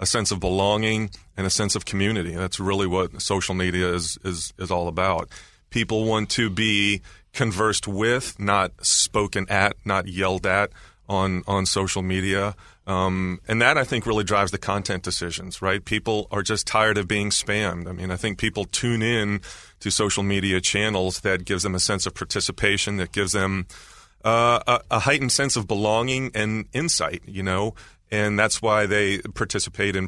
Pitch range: 95-105 Hz